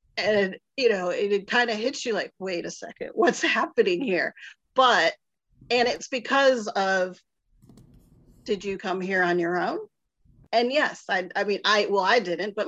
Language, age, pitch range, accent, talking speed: English, 40-59, 175-205 Hz, American, 180 wpm